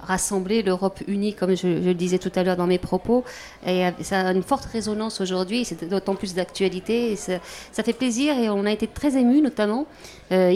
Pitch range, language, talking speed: 185-220 Hz, French, 210 wpm